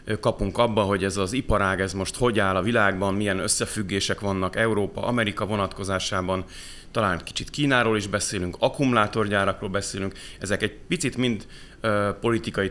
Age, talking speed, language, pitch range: 30-49, 135 wpm, Hungarian, 95-115 Hz